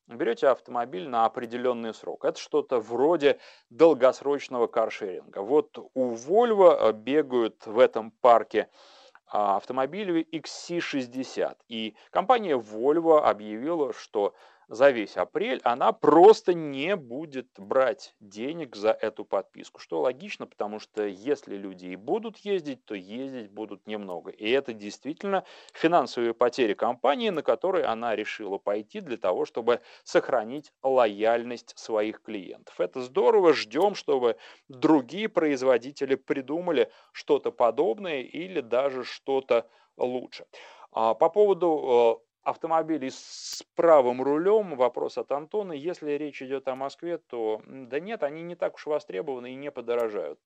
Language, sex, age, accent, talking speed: Russian, male, 30-49, native, 125 wpm